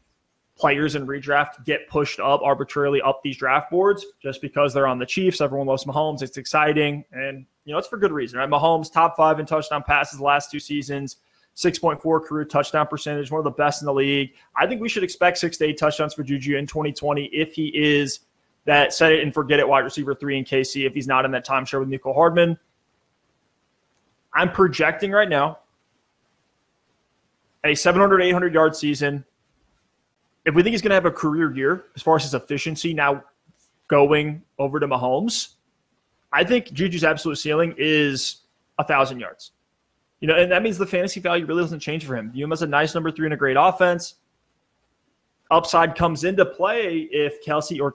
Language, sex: English, male